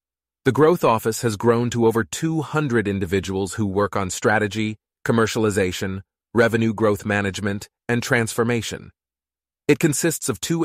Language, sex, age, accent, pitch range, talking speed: English, male, 30-49, American, 100-120 Hz, 130 wpm